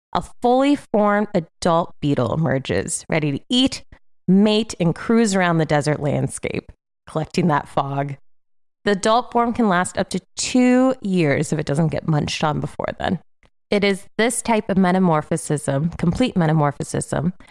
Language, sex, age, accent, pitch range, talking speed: English, female, 30-49, American, 155-190 Hz, 150 wpm